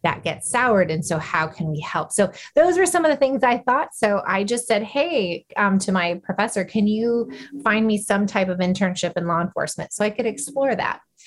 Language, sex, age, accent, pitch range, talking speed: English, female, 20-39, American, 175-220 Hz, 230 wpm